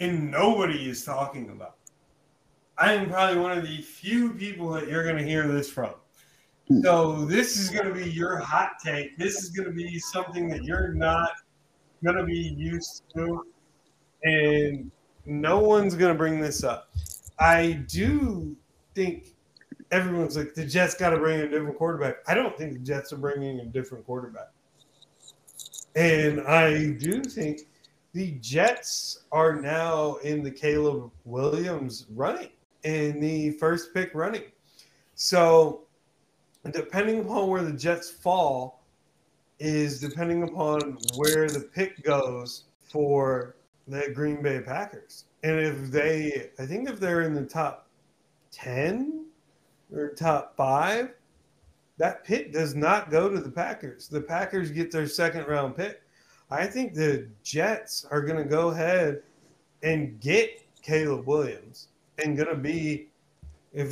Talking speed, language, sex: 150 wpm, English, male